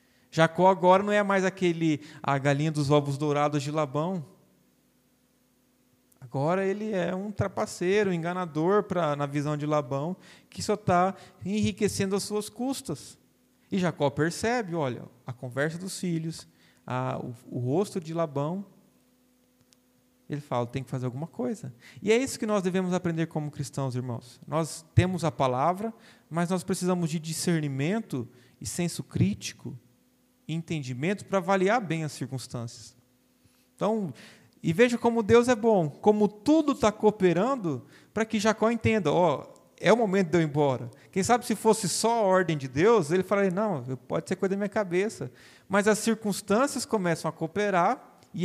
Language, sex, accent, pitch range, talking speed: Portuguese, male, Brazilian, 145-205 Hz, 160 wpm